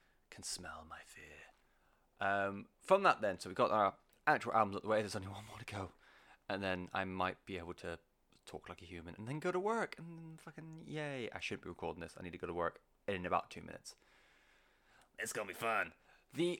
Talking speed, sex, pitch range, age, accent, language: 230 wpm, male, 95-130 Hz, 20-39, British, English